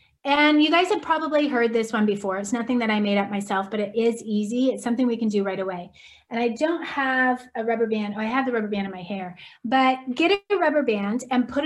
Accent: American